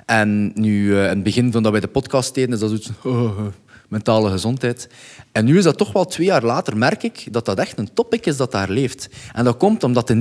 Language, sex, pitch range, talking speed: Dutch, male, 110-150 Hz, 265 wpm